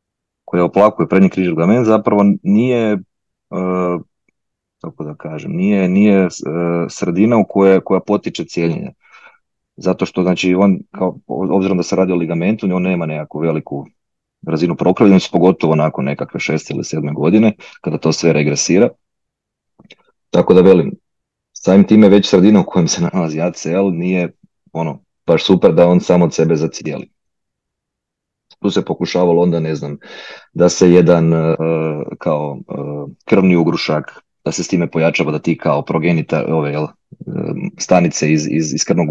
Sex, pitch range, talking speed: male, 80-95 Hz, 150 wpm